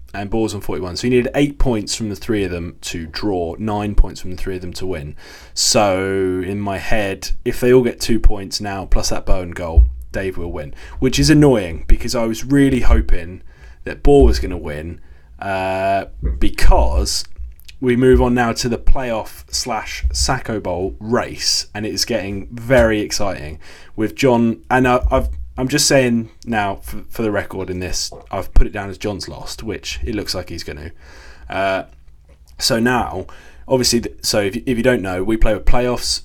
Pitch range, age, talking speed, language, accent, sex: 80-115 Hz, 20-39, 195 wpm, English, British, male